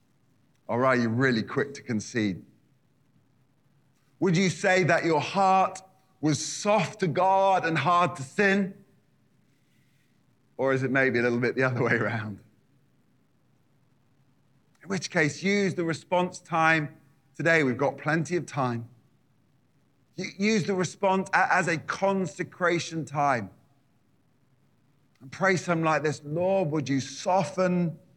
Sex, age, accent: male, 30-49, British